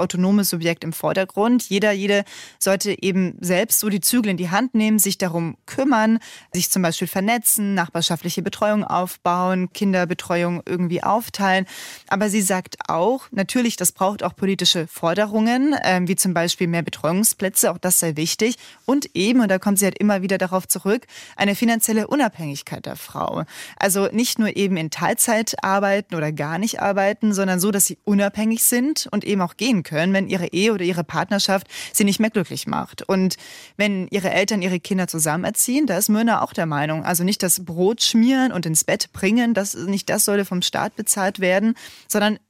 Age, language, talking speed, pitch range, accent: 20-39, German, 185 wpm, 180-215 Hz, German